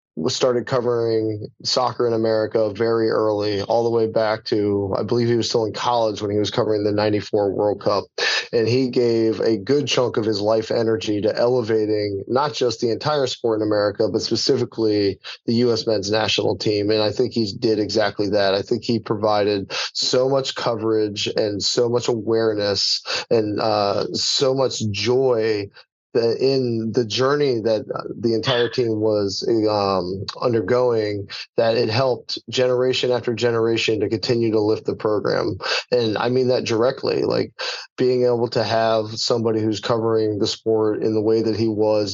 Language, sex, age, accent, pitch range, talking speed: English, male, 30-49, American, 105-120 Hz, 170 wpm